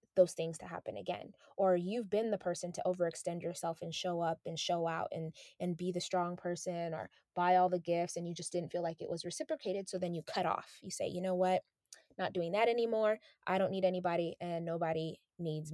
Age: 20-39